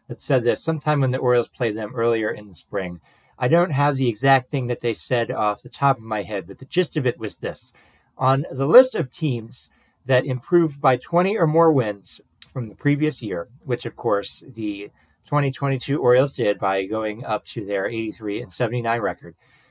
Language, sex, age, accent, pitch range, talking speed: English, male, 40-59, American, 110-145 Hz, 200 wpm